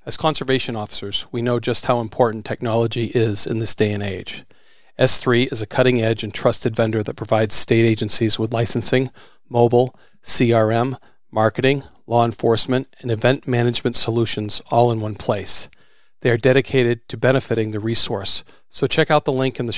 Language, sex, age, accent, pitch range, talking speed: English, male, 40-59, American, 100-125 Hz, 165 wpm